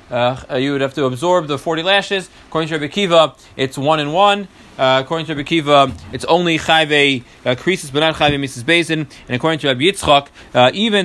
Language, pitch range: English, 135-175 Hz